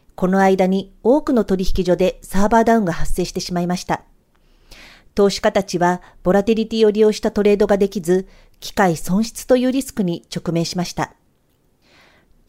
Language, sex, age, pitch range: Japanese, female, 40-59, 175-225 Hz